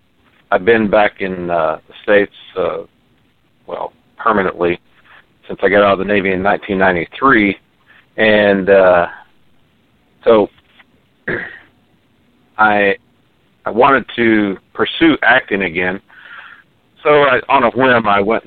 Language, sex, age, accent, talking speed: English, male, 50-69, American, 115 wpm